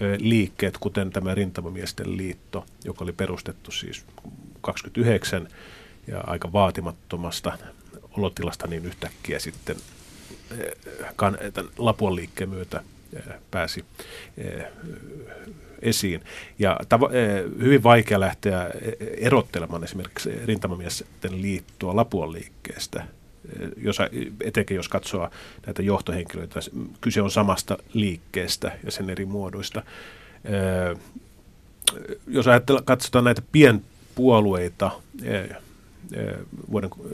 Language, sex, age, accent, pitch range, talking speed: Finnish, male, 40-59, native, 90-110 Hz, 80 wpm